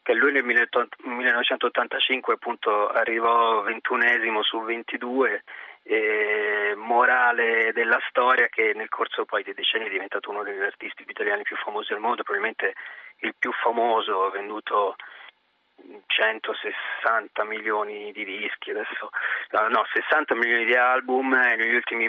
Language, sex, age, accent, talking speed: Italian, male, 30-49, native, 135 wpm